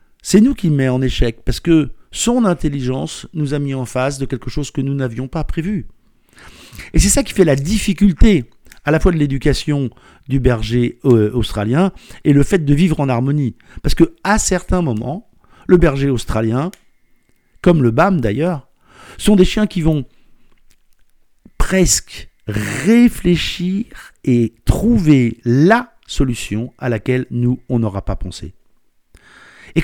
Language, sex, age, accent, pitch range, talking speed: French, male, 50-69, French, 130-185 Hz, 155 wpm